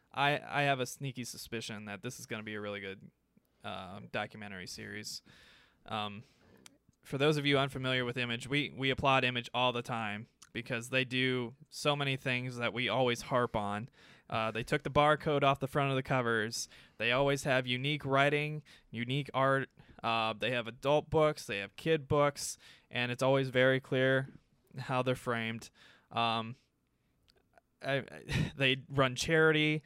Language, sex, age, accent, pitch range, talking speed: English, male, 20-39, American, 115-135 Hz, 170 wpm